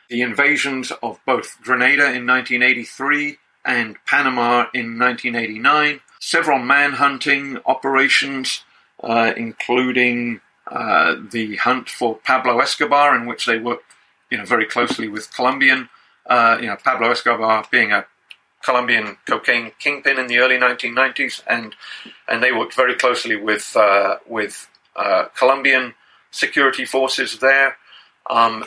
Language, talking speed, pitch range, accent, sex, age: English, 130 wpm, 110-130 Hz, British, male, 50-69